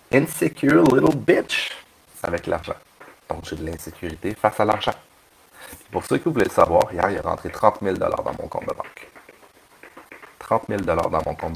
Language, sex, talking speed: French, male, 180 wpm